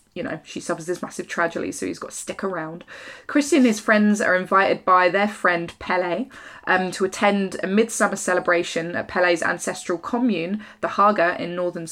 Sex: female